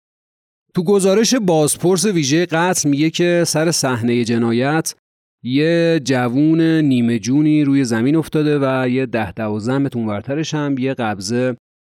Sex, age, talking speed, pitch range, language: male, 30-49, 135 wpm, 120-165 Hz, Persian